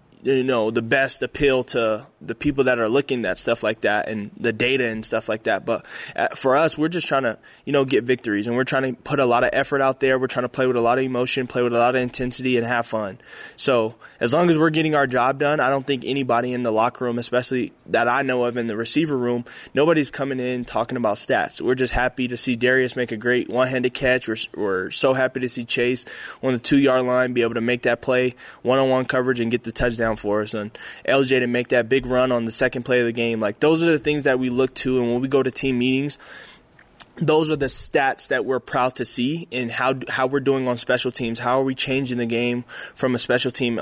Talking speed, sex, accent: 260 wpm, male, American